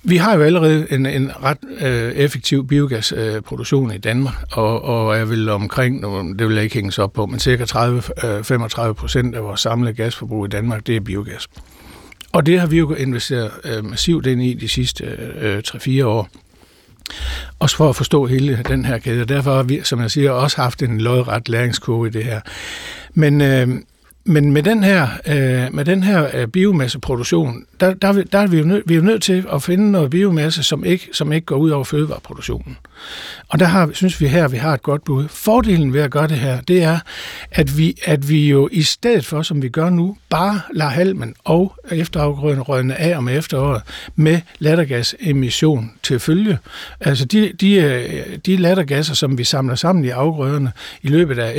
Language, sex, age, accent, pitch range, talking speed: Danish, male, 60-79, native, 120-165 Hz, 195 wpm